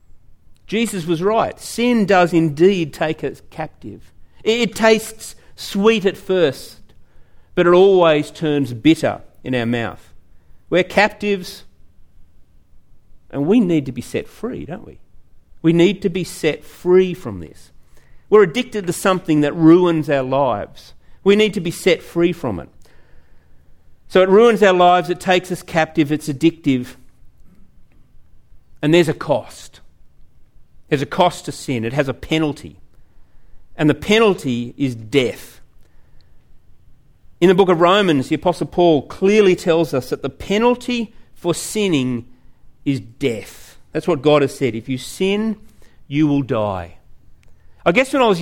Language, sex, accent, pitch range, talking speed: English, male, Australian, 125-185 Hz, 150 wpm